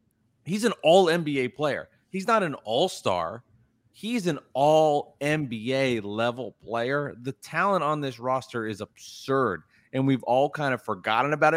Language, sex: English, male